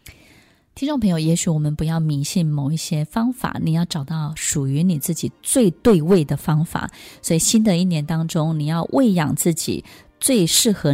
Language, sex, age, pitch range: Chinese, female, 20-39, 155-205 Hz